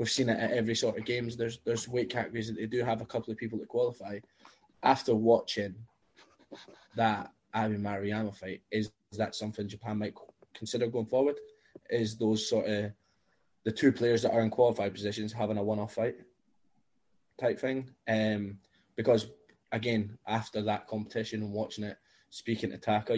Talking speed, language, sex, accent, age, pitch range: 170 wpm, English, male, British, 20-39, 105-115 Hz